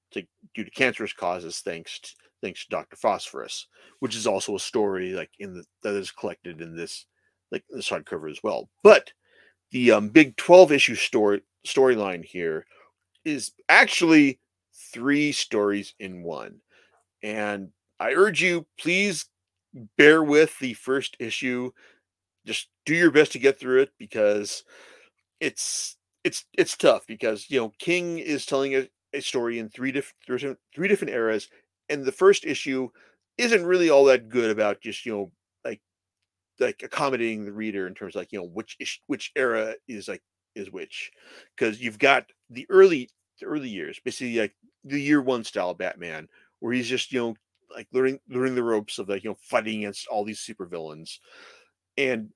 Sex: male